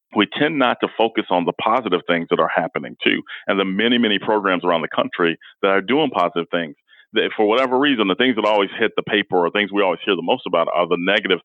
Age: 40-59